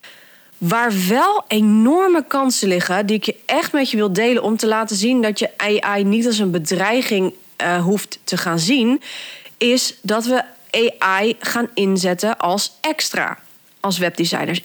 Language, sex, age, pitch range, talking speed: Dutch, female, 30-49, 175-225 Hz, 155 wpm